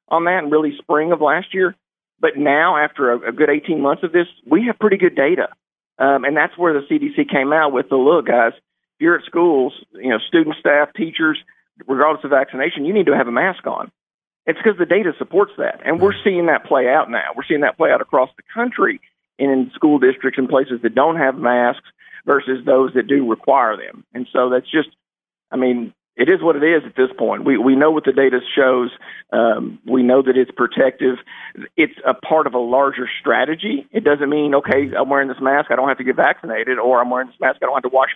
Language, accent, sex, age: English, American, male, 50-69